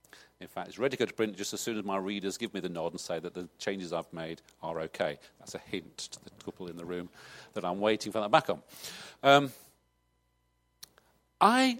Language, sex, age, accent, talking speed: English, male, 40-59, British, 230 wpm